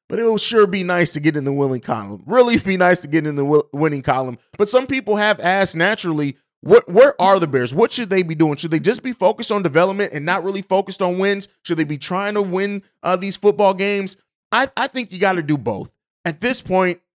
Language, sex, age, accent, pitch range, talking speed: English, male, 20-39, American, 165-200 Hz, 250 wpm